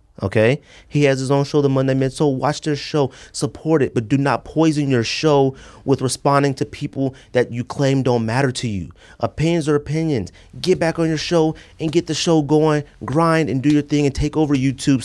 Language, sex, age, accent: English, male, 30-49, American